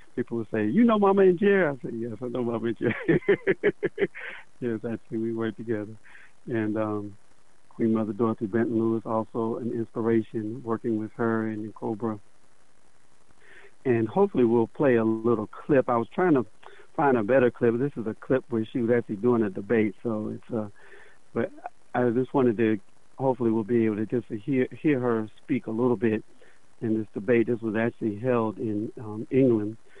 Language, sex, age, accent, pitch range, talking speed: English, male, 60-79, American, 110-125 Hz, 185 wpm